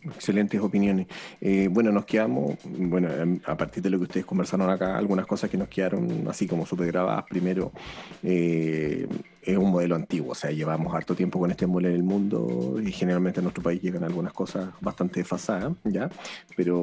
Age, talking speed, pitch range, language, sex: 30-49, 190 wpm, 90-100 Hz, Spanish, male